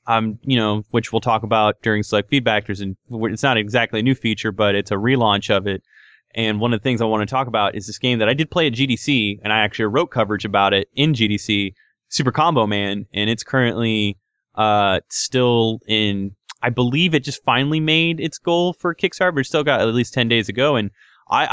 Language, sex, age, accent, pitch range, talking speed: English, male, 20-39, American, 110-150 Hz, 225 wpm